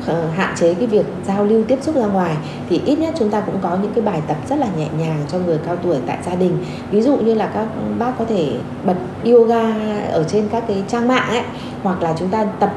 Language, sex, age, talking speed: Vietnamese, female, 20-39, 255 wpm